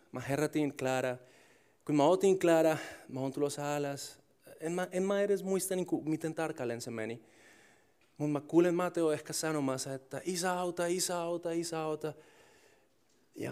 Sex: male